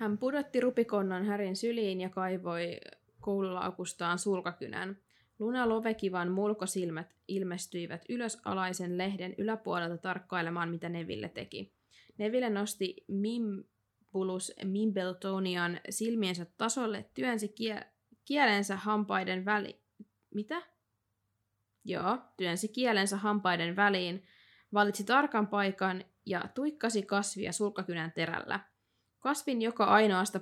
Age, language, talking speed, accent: 20-39, Finnish, 95 wpm, native